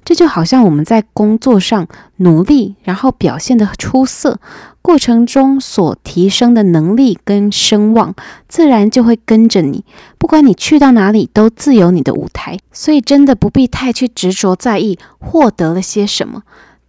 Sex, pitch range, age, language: female, 180-250 Hz, 20-39, Chinese